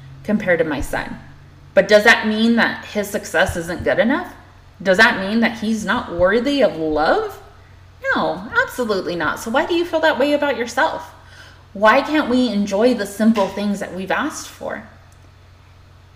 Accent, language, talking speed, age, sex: American, English, 170 wpm, 20-39, female